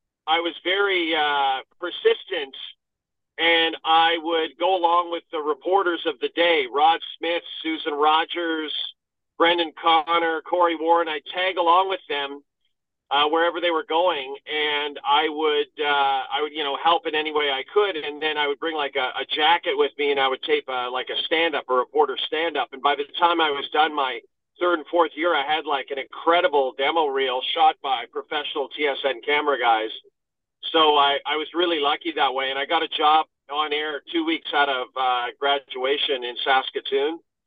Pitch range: 150-190 Hz